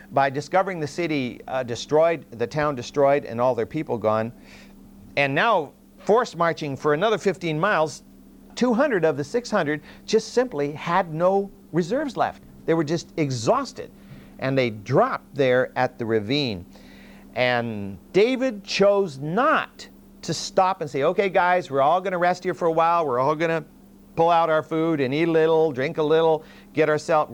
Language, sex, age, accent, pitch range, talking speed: English, male, 50-69, American, 130-170 Hz, 175 wpm